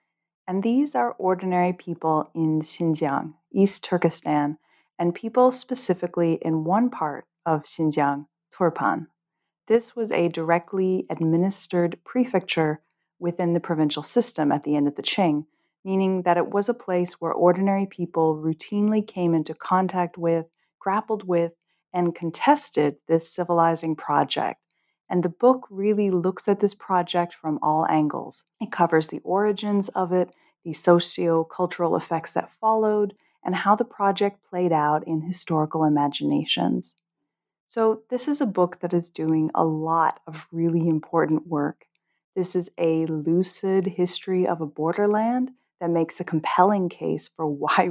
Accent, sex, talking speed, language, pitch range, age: American, female, 145 wpm, English, 160-195 Hz, 30-49